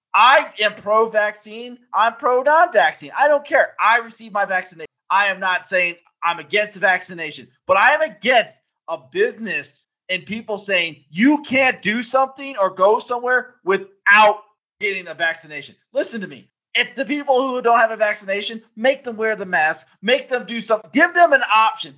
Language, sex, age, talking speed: English, male, 30-49, 175 wpm